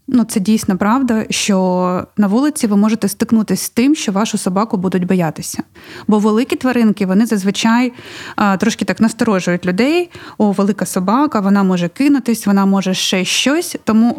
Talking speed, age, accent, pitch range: 160 wpm, 20-39, native, 195-240 Hz